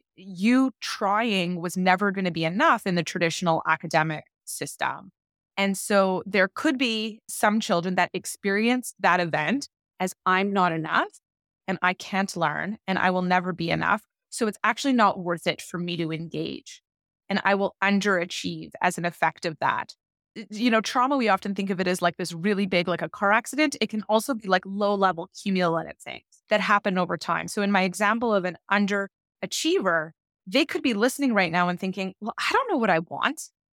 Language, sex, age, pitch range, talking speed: English, female, 20-39, 185-235 Hz, 195 wpm